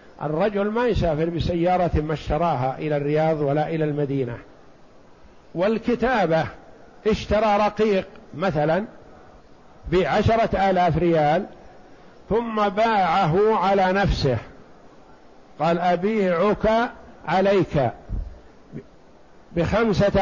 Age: 50-69